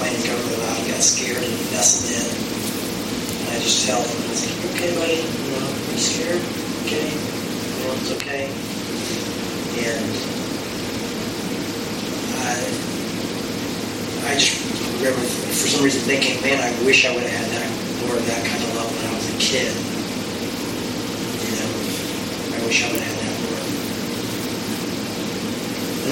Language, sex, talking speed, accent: English, male, 150 wpm, American